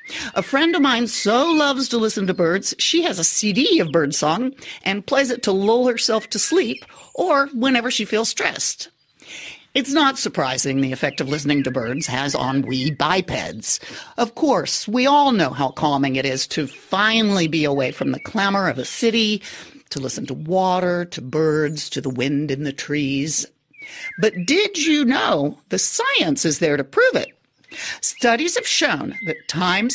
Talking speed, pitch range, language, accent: 180 wpm, 155-260 Hz, English, American